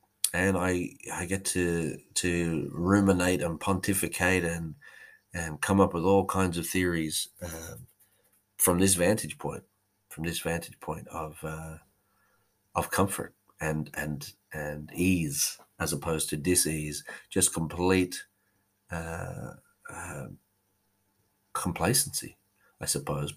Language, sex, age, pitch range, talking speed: English, male, 30-49, 80-95 Hz, 120 wpm